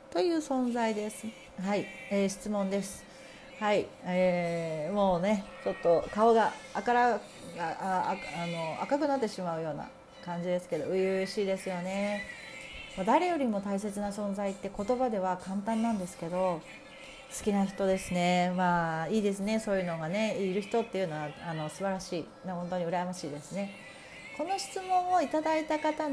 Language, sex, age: Japanese, female, 40-59